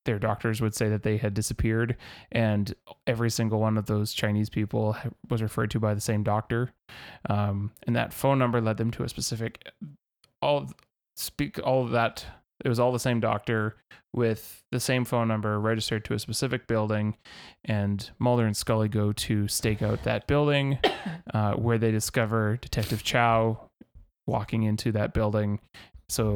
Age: 20-39